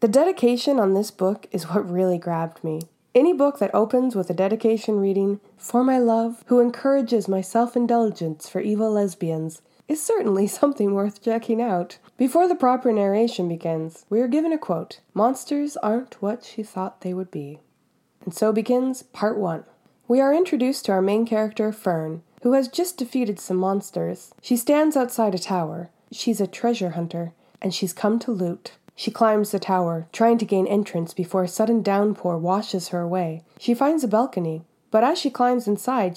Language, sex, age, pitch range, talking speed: English, female, 20-39, 180-240 Hz, 180 wpm